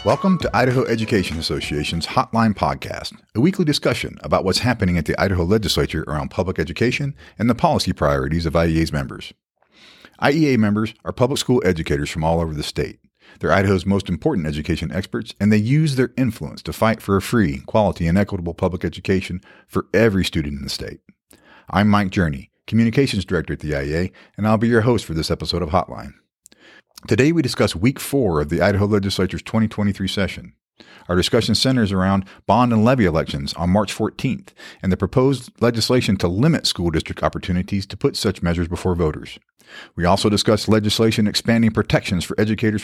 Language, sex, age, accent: English, male, 40-59, American